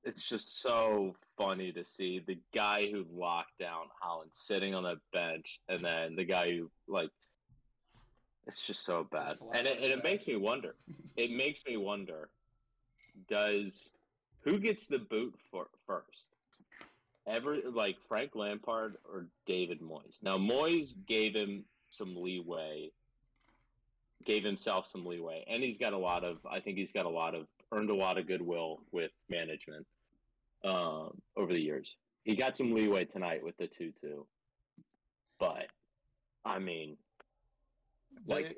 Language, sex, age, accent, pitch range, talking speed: English, male, 30-49, American, 85-110 Hz, 145 wpm